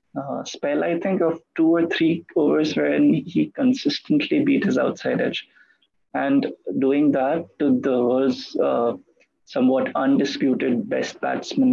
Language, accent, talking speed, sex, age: English, Indian, 135 wpm, male, 20-39